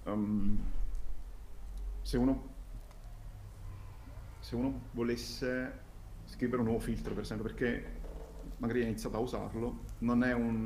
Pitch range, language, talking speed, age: 105-115 Hz, Italian, 120 wpm, 30-49